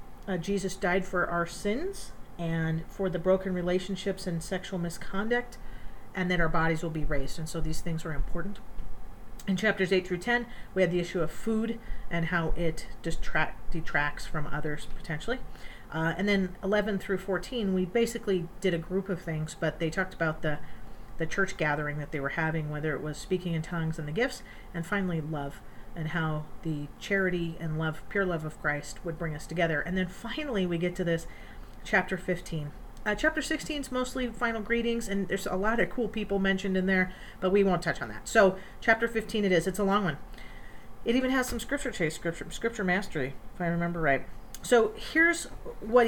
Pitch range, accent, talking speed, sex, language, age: 160-200 Hz, American, 200 wpm, female, English, 40-59